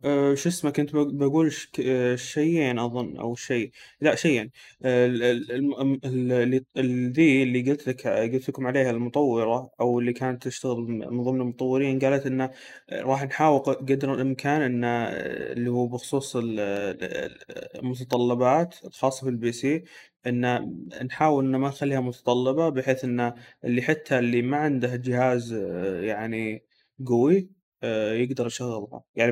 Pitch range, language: 120-140 Hz, Arabic